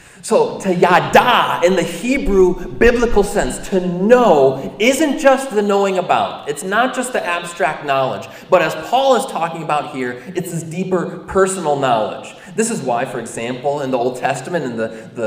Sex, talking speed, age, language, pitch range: male, 175 wpm, 30-49, English, 125-180 Hz